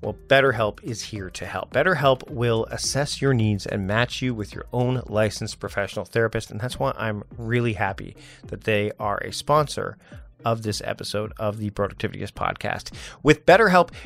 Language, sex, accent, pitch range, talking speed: English, male, American, 110-145 Hz, 170 wpm